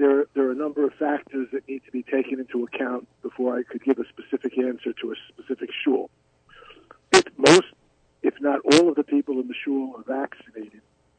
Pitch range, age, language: 125-140 Hz, 50-69, English